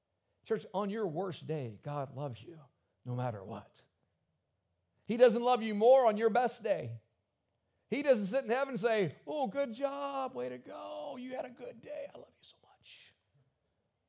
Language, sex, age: English, male, 50-69